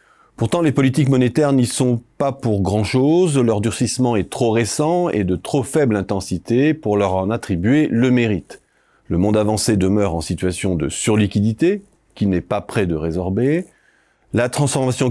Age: 40-59